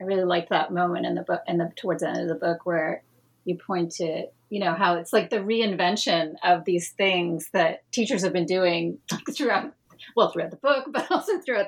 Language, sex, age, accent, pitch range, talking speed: English, female, 30-49, American, 170-215 Hz, 220 wpm